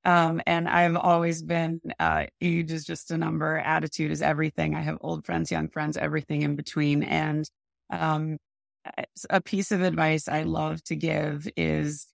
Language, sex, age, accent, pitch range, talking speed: English, female, 30-49, American, 150-190 Hz, 170 wpm